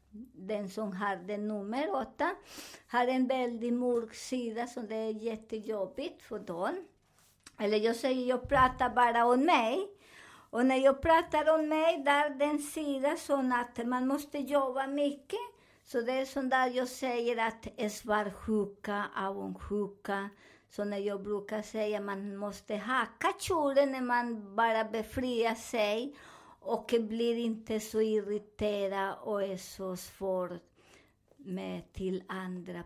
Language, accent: Swedish, American